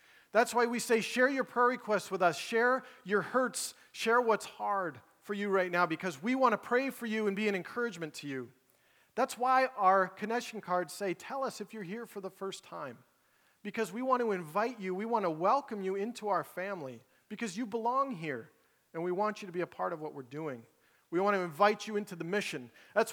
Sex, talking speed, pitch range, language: male, 225 wpm, 170-225 Hz, English